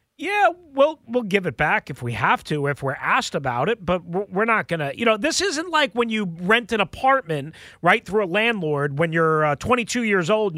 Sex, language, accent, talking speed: male, English, American, 235 wpm